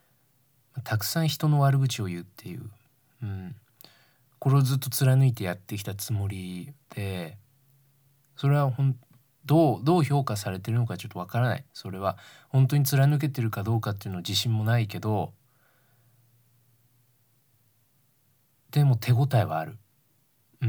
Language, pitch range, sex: Japanese, 105-130 Hz, male